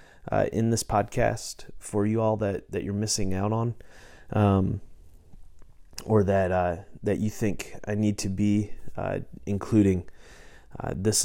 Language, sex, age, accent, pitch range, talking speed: English, male, 30-49, American, 95-110 Hz, 150 wpm